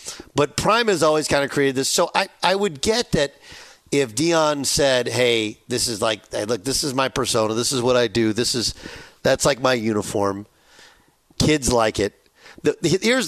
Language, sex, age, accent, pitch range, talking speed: English, male, 50-69, American, 115-150 Hz, 185 wpm